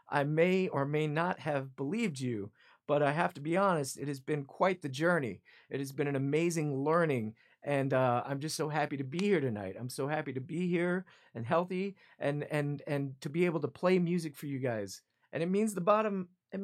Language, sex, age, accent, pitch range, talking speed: English, male, 40-59, American, 140-185 Hz, 225 wpm